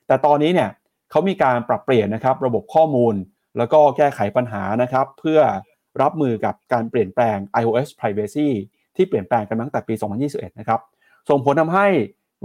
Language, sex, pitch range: Thai, male, 115-150 Hz